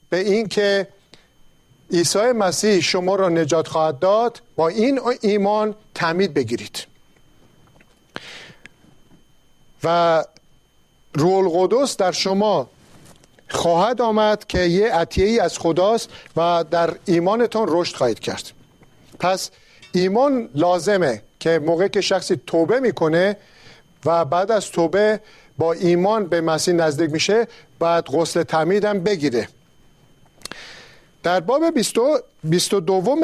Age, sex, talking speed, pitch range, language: 50-69, male, 105 wpm, 160-210 Hz, Persian